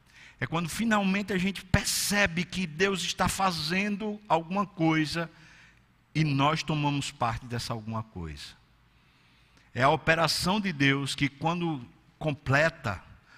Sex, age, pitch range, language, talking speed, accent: male, 60-79, 120-175 Hz, Portuguese, 120 wpm, Brazilian